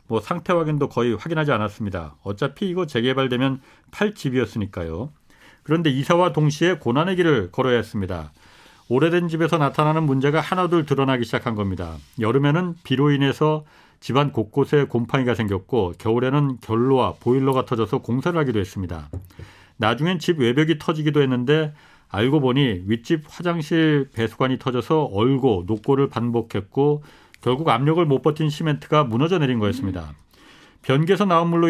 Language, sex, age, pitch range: Korean, male, 40-59, 115-155 Hz